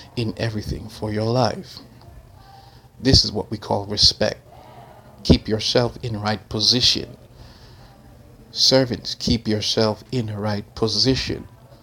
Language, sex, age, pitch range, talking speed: English, male, 60-79, 105-120 Hz, 115 wpm